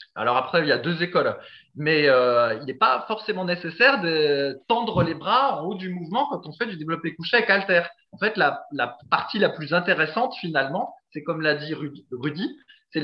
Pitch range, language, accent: 145-185 Hz, French, French